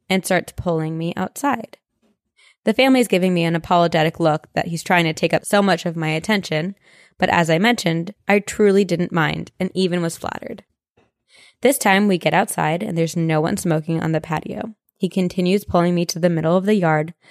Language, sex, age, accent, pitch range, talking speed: English, female, 20-39, American, 170-220 Hz, 200 wpm